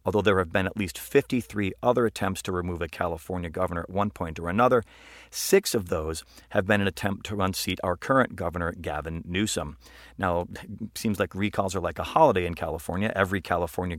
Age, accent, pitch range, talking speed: 40-59, American, 90-110 Hz, 195 wpm